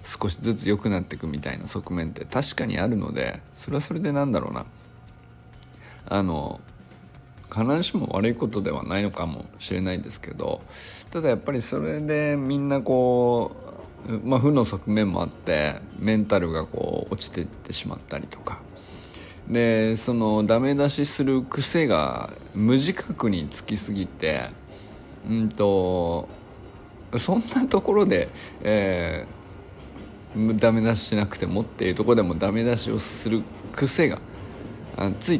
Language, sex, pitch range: Japanese, male, 100-130 Hz